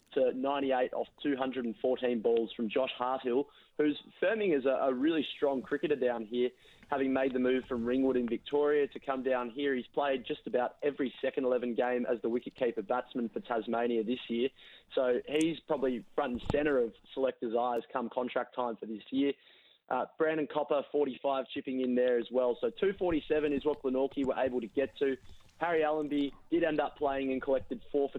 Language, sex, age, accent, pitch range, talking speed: English, male, 20-39, Australian, 125-145 Hz, 190 wpm